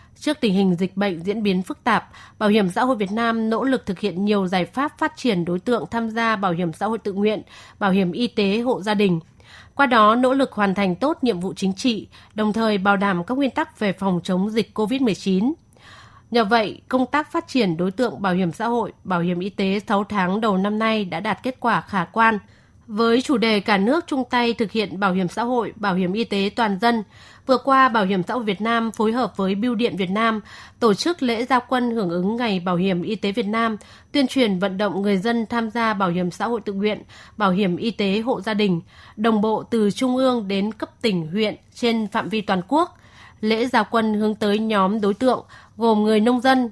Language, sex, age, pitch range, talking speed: Vietnamese, female, 20-39, 200-235 Hz, 240 wpm